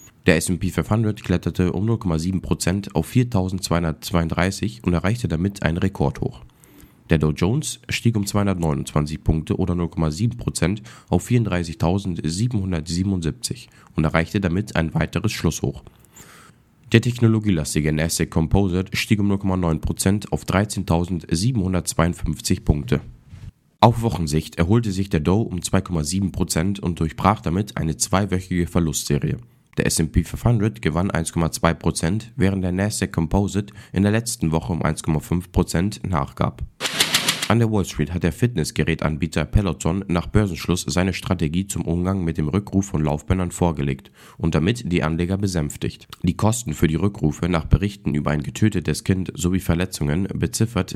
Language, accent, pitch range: German, German, 80-100 Hz